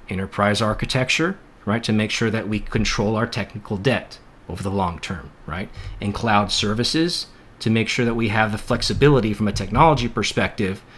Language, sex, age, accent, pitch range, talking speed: English, male, 30-49, American, 100-120 Hz, 175 wpm